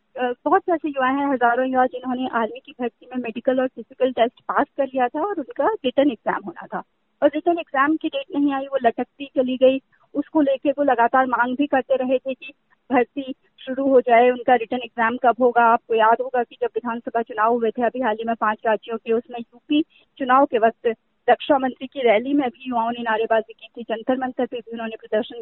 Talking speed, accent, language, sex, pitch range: 220 wpm, native, Hindi, female, 235-290 Hz